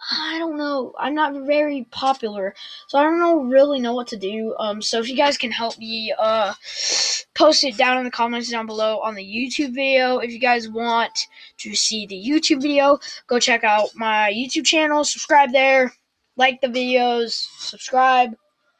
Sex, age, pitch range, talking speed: female, 10-29, 225-285 Hz, 185 wpm